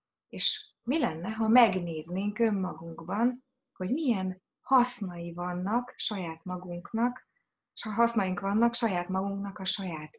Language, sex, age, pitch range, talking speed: Hungarian, female, 20-39, 180-235 Hz, 120 wpm